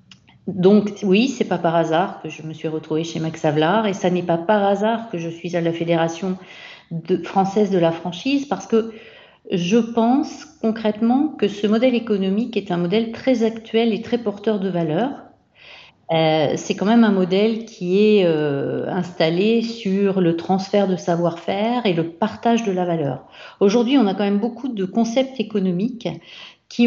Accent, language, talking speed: French, French, 185 wpm